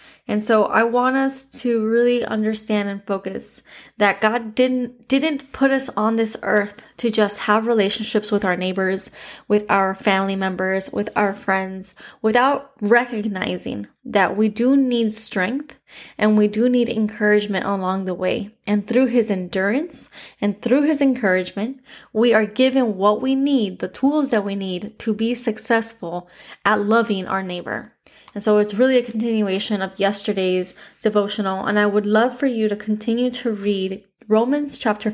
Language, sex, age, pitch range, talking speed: English, female, 20-39, 195-230 Hz, 160 wpm